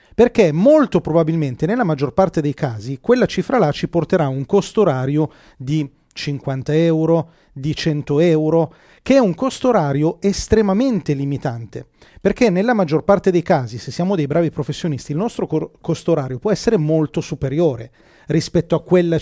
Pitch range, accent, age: 150-200 Hz, native, 30-49